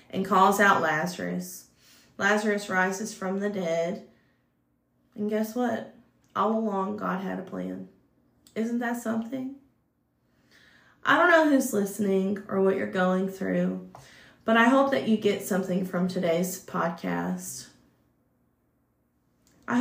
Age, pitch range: 30-49, 185-235 Hz